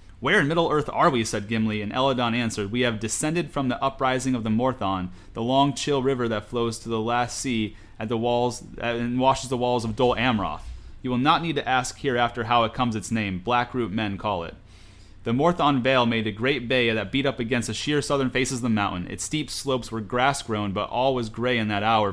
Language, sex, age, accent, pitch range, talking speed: English, male, 30-49, American, 110-135 Hz, 230 wpm